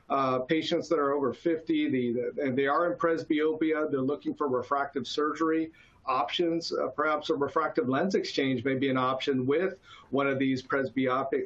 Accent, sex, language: American, male, English